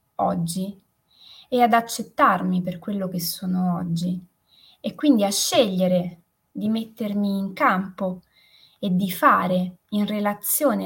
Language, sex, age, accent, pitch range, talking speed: Italian, female, 20-39, native, 185-225 Hz, 120 wpm